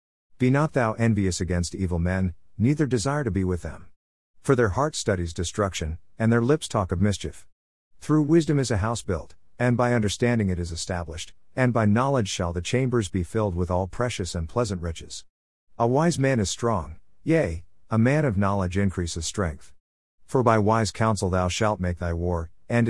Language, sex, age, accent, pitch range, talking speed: English, male, 50-69, American, 90-115 Hz, 190 wpm